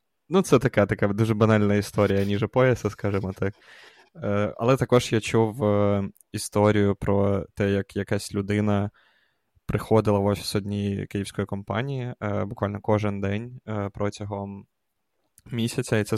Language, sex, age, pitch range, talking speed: Ukrainian, male, 20-39, 100-115 Hz, 125 wpm